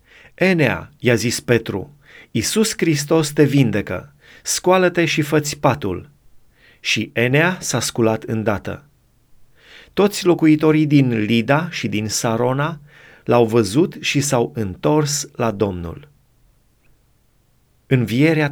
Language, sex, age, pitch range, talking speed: Romanian, male, 30-49, 115-150 Hz, 105 wpm